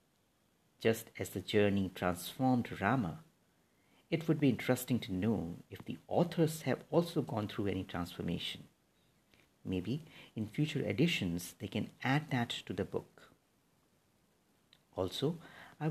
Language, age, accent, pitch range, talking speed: English, 50-69, Indian, 95-140 Hz, 130 wpm